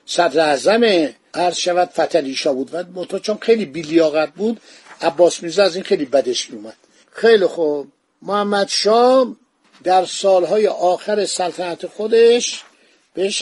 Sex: male